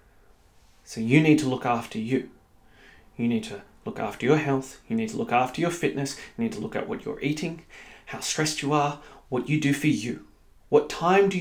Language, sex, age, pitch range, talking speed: English, male, 30-49, 120-155 Hz, 215 wpm